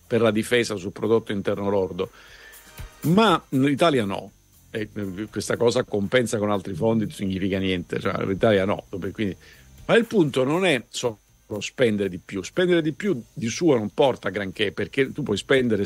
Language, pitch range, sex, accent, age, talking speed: Italian, 100-130 Hz, male, native, 50-69, 170 wpm